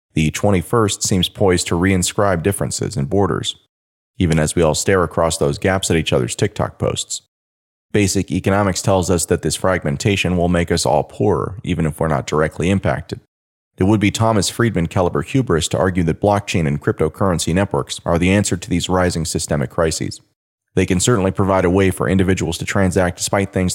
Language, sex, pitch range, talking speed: English, male, 80-100 Hz, 185 wpm